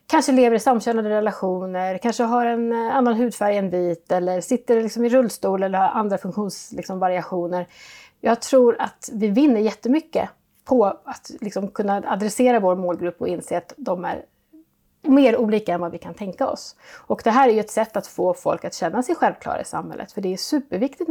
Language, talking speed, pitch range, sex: Swedish, 195 wpm, 185-235 Hz, female